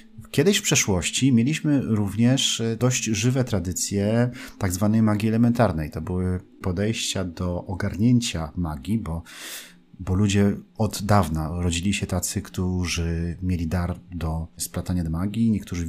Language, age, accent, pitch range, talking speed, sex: Polish, 40-59, native, 90-120 Hz, 130 wpm, male